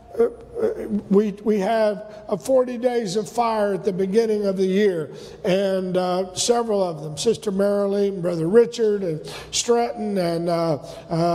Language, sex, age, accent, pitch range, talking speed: English, male, 50-69, American, 195-245 Hz, 150 wpm